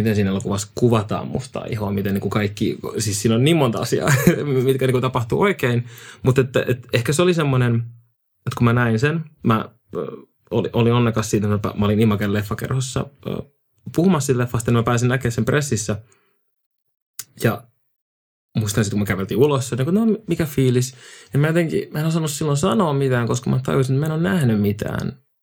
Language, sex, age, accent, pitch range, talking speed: Finnish, male, 20-39, native, 110-140 Hz, 185 wpm